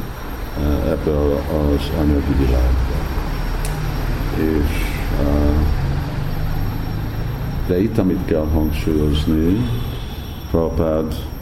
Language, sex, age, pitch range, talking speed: Hungarian, male, 50-69, 75-85 Hz, 60 wpm